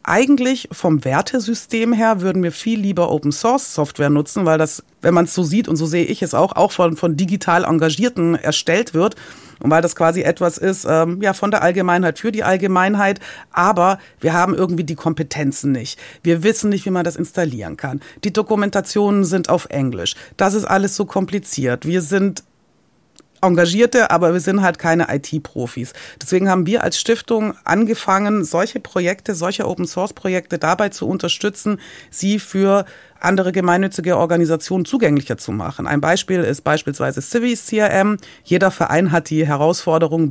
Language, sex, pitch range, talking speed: German, female, 155-200 Hz, 165 wpm